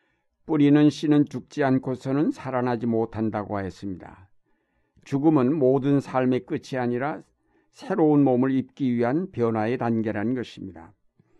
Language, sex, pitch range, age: Korean, male, 120-145 Hz, 60-79